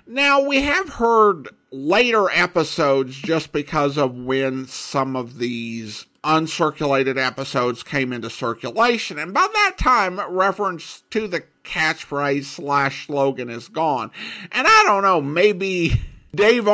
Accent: American